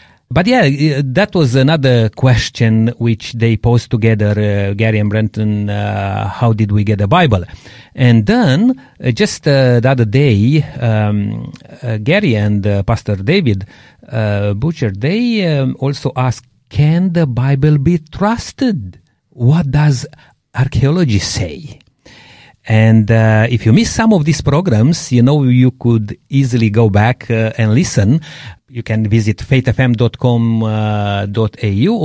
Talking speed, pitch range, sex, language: 140 wpm, 110-145 Hz, male, English